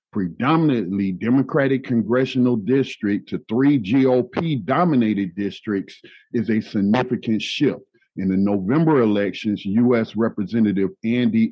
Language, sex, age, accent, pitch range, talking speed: English, male, 50-69, American, 100-130 Hz, 100 wpm